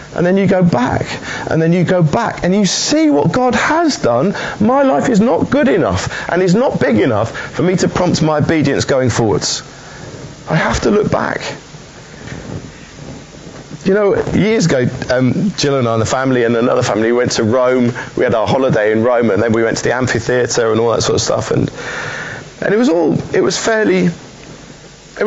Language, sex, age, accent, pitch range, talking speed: English, male, 30-49, British, 130-195 Hz, 205 wpm